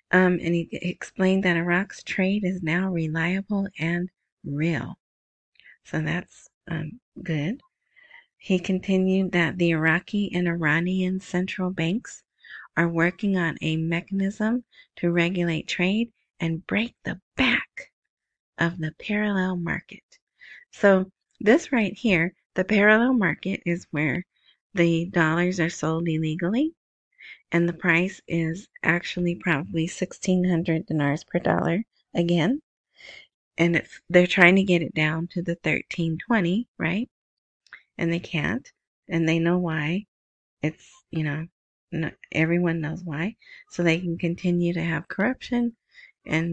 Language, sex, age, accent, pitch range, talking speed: English, female, 30-49, American, 165-190 Hz, 125 wpm